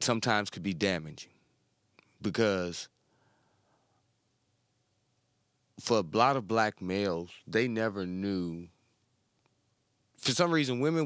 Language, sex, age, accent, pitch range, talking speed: English, male, 30-49, American, 95-120 Hz, 100 wpm